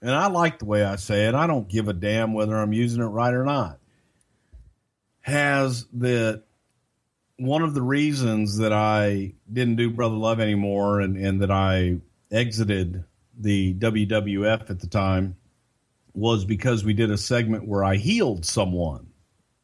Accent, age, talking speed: American, 50-69, 160 wpm